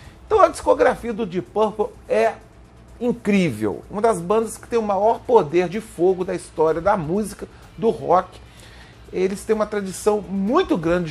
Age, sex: 40-59, male